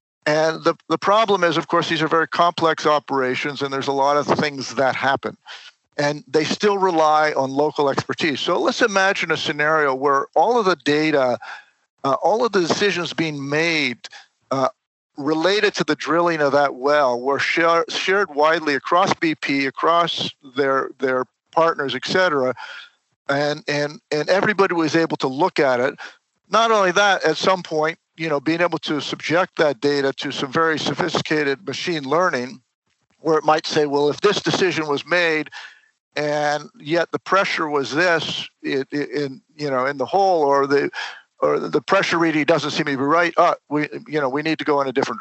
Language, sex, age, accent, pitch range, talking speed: English, male, 50-69, American, 140-170 Hz, 185 wpm